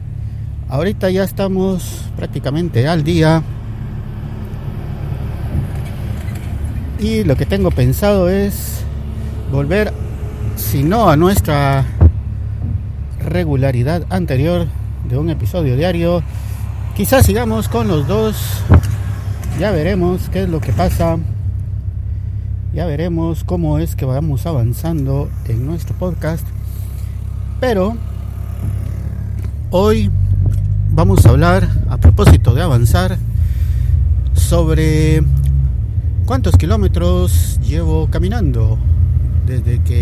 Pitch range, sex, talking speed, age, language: 85-105 Hz, male, 90 wpm, 50-69, Spanish